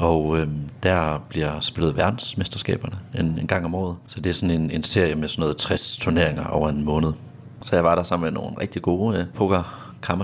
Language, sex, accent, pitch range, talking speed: English, male, Danish, 80-95 Hz, 225 wpm